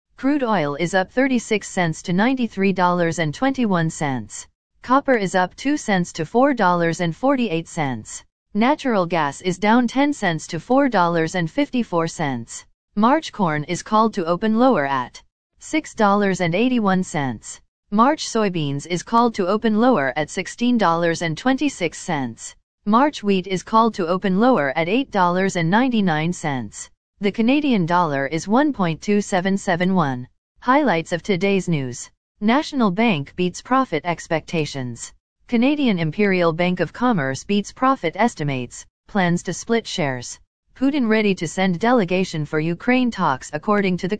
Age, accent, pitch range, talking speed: 40-59, American, 165-230 Hz, 120 wpm